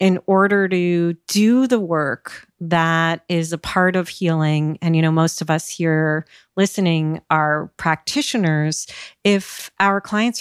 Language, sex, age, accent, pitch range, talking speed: English, female, 40-59, American, 160-195 Hz, 145 wpm